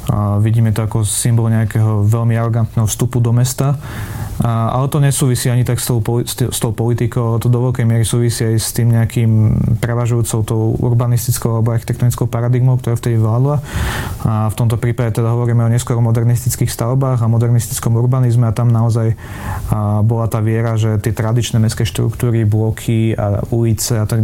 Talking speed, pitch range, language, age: 175 wpm, 110-120 Hz, Slovak, 30-49